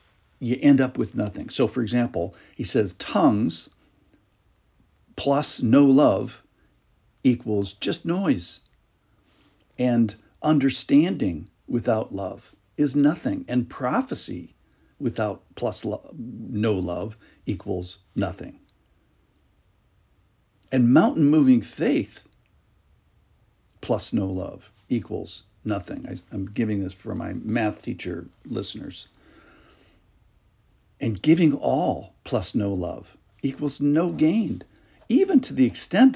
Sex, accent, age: male, American, 60-79